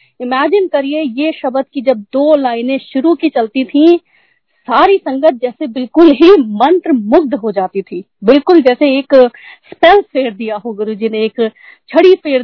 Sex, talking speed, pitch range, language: female, 165 wpm, 225-300 Hz, Hindi